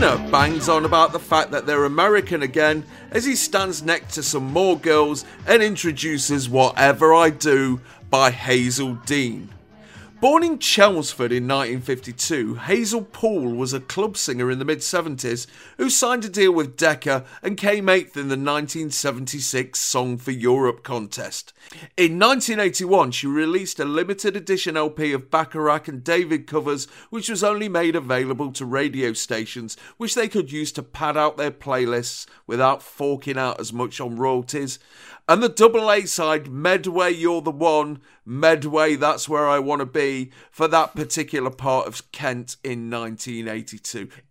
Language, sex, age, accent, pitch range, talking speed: English, male, 40-59, British, 130-175 Hz, 155 wpm